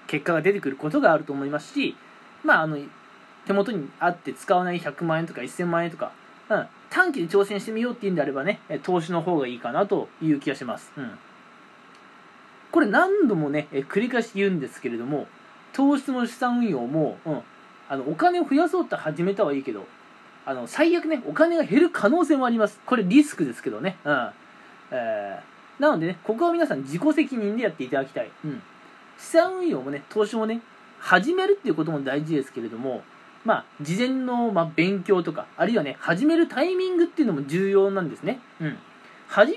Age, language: 20-39, Japanese